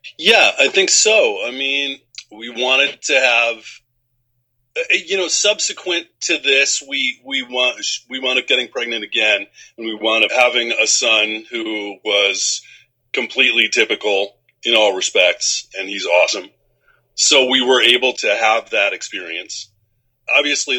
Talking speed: 145 wpm